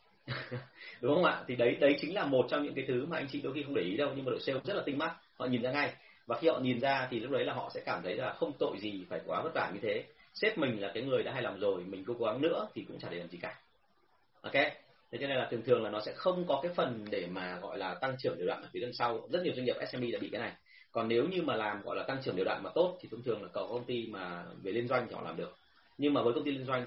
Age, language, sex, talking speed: 30-49, Vietnamese, male, 330 wpm